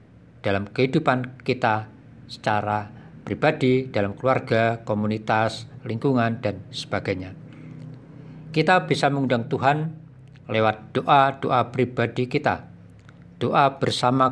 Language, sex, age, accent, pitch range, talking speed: Indonesian, male, 50-69, native, 115-145 Hz, 90 wpm